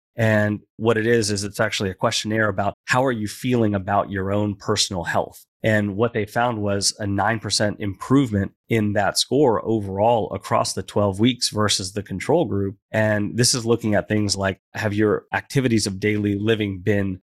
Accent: American